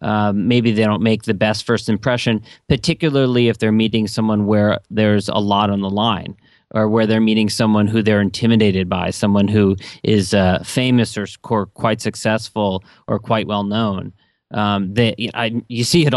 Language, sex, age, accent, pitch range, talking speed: English, male, 40-59, American, 105-115 Hz, 165 wpm